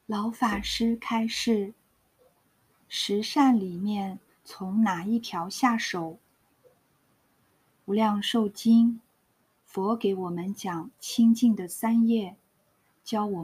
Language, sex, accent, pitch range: Chinese, female, native, 190-230 Hz